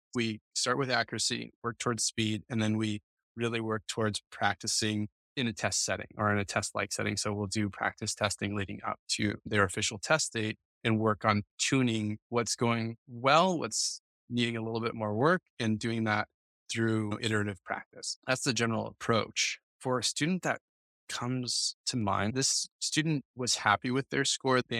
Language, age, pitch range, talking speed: English, 20-39, 105-120 Hz, 180 wpm